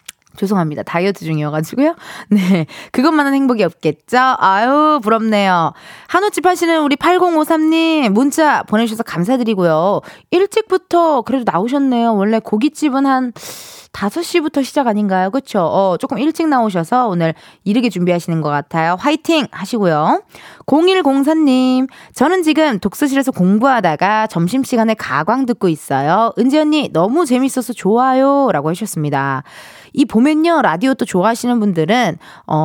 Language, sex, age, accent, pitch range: Korean, female, 20-39, native, 185-300 Hz